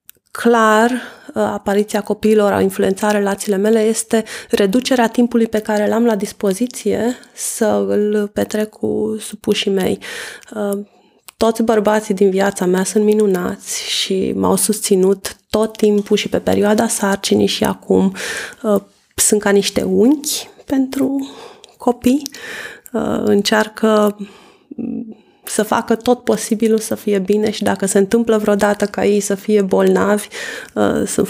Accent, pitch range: native, 200-235 Hz